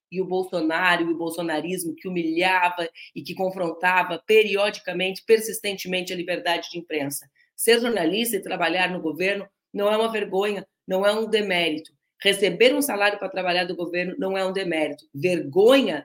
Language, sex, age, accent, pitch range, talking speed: Portuguese, female, 40-59, Brazilian, 180-245 Hz, 160 wpm